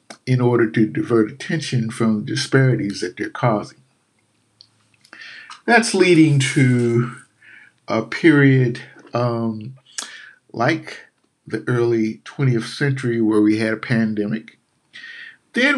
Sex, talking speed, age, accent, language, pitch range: male, 105 wpm, 50-69, American, English, 110-140 Hz